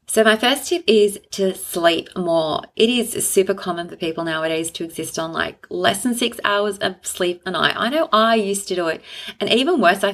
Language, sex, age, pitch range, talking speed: English, female, 30-49, 175-220 Hz, 225 wpm